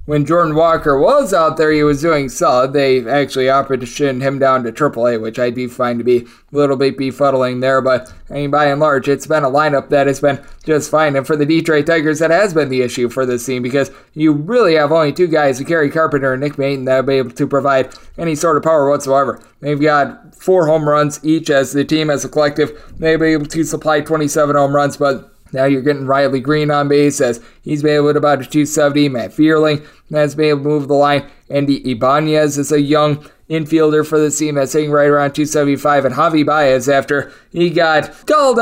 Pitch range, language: 140-160 Hz, English